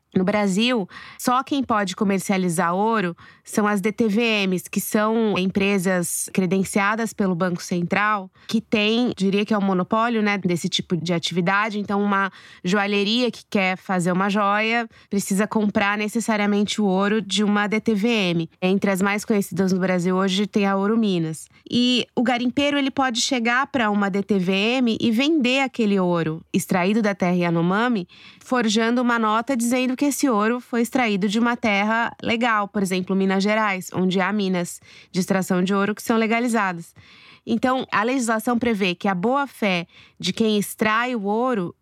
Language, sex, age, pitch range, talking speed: Portuguese, female, 20-39, 190-230 Hz, 160 wpm